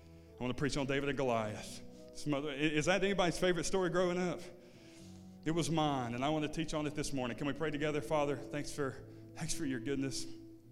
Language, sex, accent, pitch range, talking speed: English, male, American, 110-145 Hz, 205 wpm